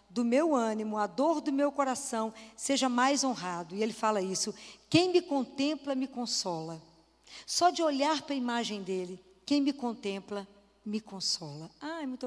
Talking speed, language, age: 165 wpm, Portuguese, 60-79